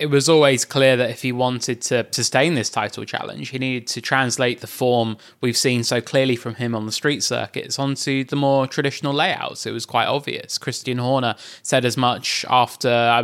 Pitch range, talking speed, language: 120-145 Hz, 205 wpm, English